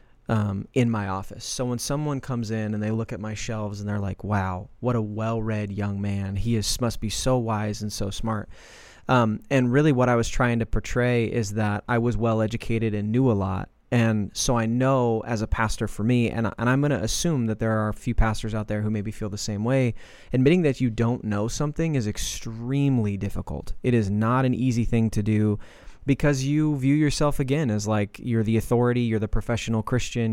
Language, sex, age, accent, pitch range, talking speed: English, male, 20-39, American, 105-125 Hz, 220 wpm